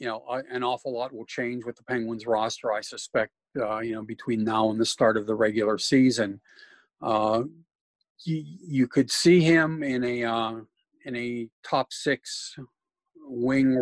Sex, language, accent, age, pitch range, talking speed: male, English, American, 50-69, 110-135 Hz, 165 wpm